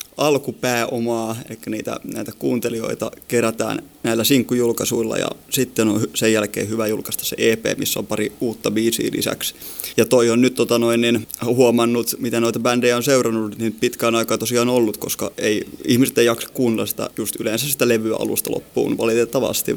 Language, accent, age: Finnish, native, 20-39